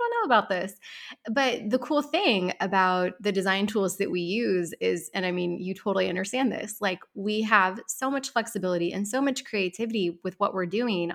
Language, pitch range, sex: English, 185-245 Hz, female